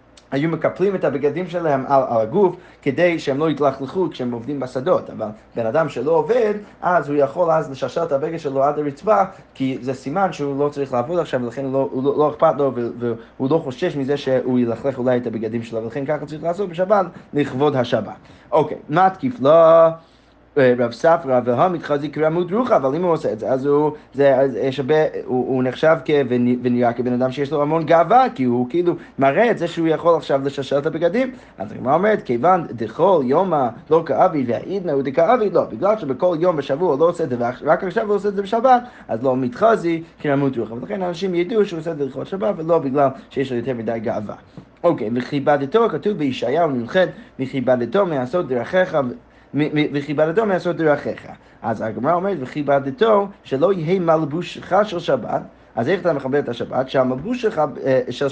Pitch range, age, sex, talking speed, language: 135-185 Hz, 20-39, male, 170 wpm, Hebrew